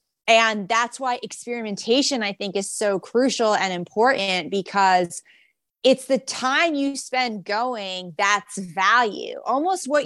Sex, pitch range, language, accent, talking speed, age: female, 195-245 Hz, English, American, 130 wpm, 20-39